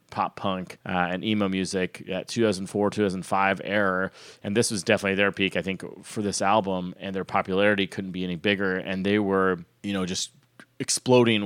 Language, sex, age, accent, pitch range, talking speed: English, male, 30-49, American, 95-110 Hz, 185 wpm